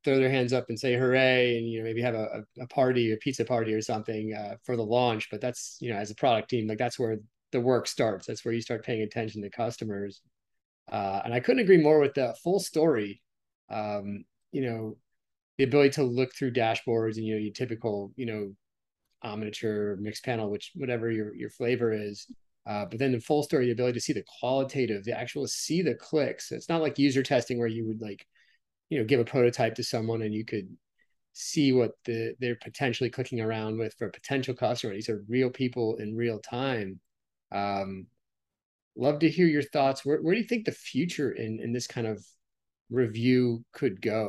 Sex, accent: male, American